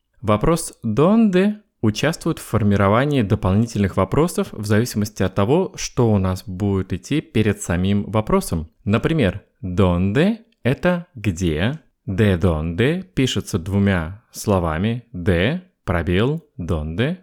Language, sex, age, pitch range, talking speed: Russian, male, 20-39, 95-130 Hz, 110 wpm